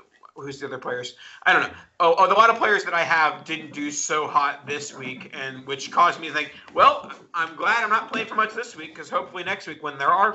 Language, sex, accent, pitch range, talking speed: English, male, American, 130-155 Hz, 260 wpm